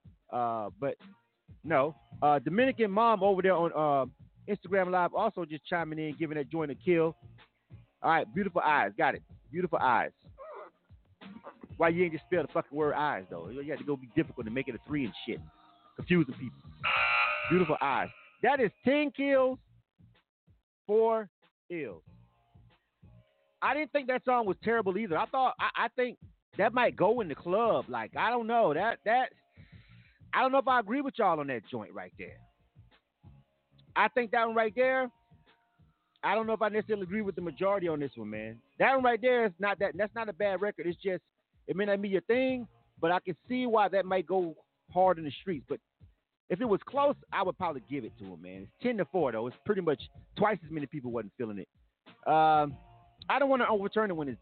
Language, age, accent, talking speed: English, 30-49, American, 205 wpm